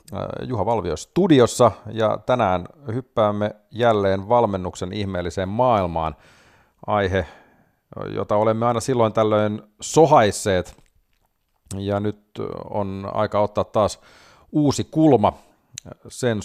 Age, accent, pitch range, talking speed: 40-59, native, 95-120 Hz, 95 wpm